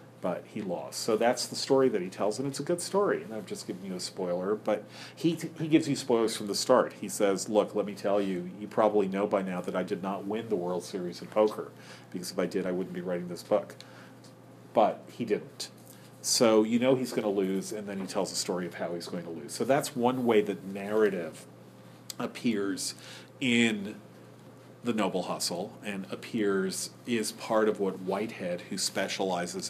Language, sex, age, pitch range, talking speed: English, male, 40-59, 95-125 Hz, 215 wpm